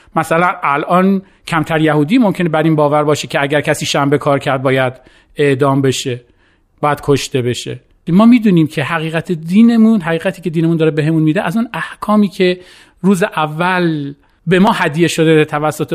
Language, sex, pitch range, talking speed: Persian, male, 145-190 Hz, 170 wpm